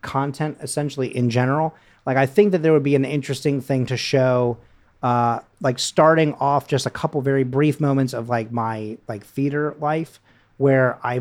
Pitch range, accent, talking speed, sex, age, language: 115-145 Hz, American, 180 wpm, male, 30-49, English